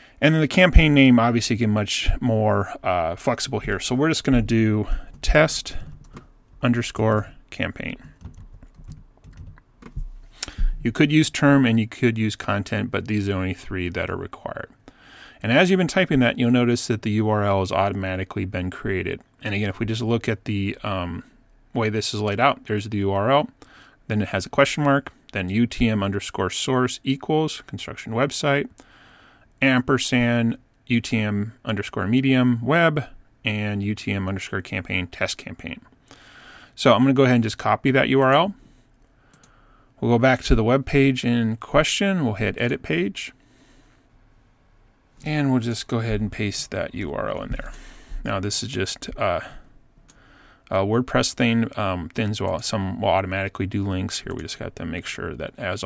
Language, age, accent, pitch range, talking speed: English, 30-49, American, 100-130 Hz, 160 wpm